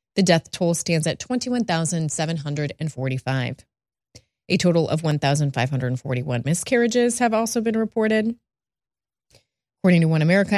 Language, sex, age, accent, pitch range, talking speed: English, female, 30-49, American, 145-185 Hz, 110 wpm